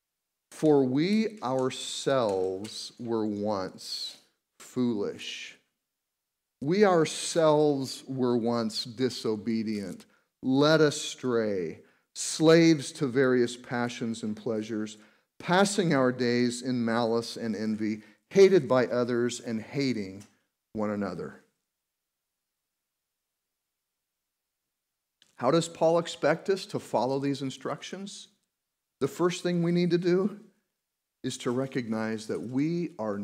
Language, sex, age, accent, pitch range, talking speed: English, male, 40-59, American, 110-160 Hz, 100 wpm